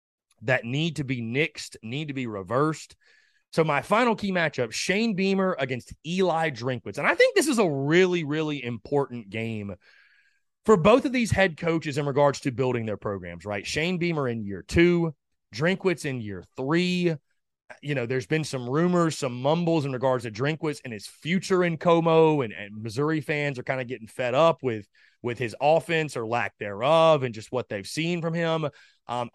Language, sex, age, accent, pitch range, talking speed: English, male, 30-49, American, 125-175 Hz, 190 wpm